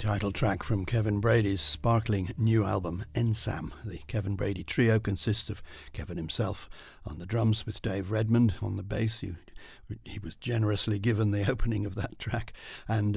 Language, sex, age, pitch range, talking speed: English, male, 60-79, 95-115 Hz, 165 wpm